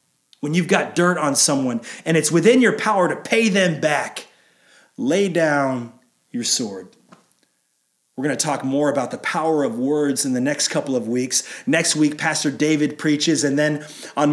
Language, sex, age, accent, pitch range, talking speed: English, male, 30-49, American, 150-215 Hz, 175 wpm